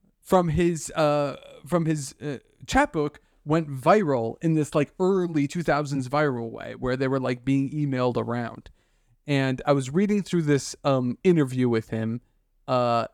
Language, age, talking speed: English, 30-49, 165 wpm